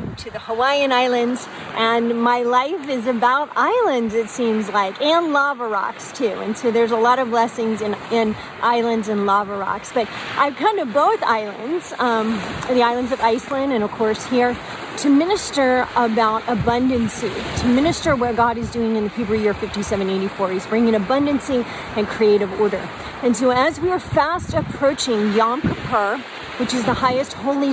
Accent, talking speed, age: American, 175 wpm, 40-59